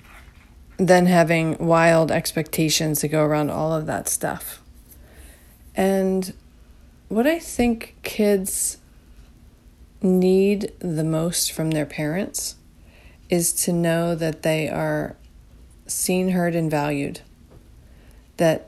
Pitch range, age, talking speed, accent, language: 145-170 Hz, 40-59, 105 wpm, American, English